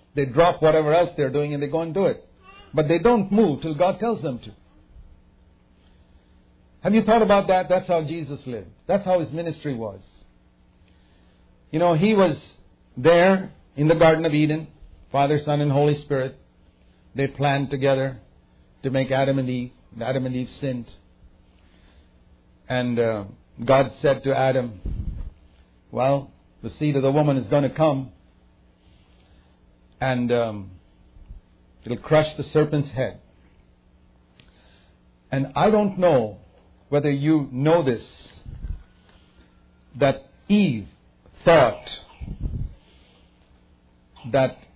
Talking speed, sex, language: 130 wpm, male, English